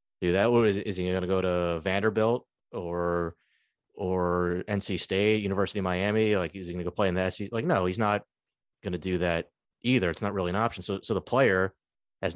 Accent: American